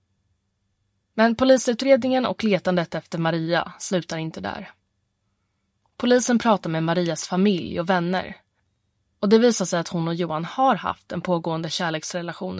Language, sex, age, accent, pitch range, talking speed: Swedish, female, 20-39, native, 170-215 Hz, 140 wpm